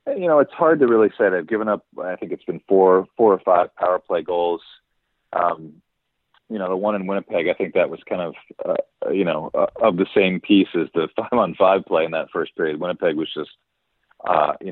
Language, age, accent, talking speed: English, 40-59, American, 230 wpm